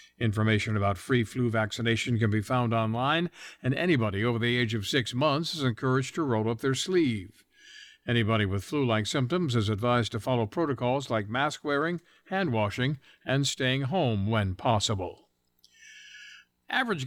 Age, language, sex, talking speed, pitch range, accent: 60-79, English, male, 155 wpm, 110-150 Hz, American